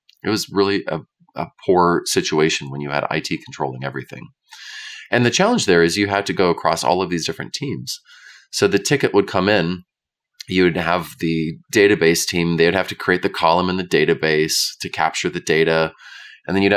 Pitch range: 80-100 Hz